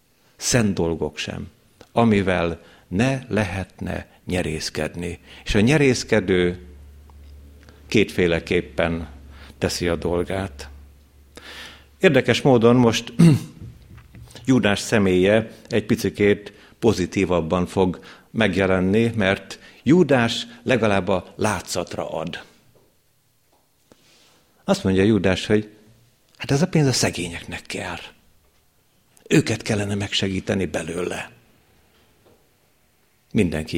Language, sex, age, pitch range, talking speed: Hungarian, male, 60-79, 85-115 Hz, 85 wpm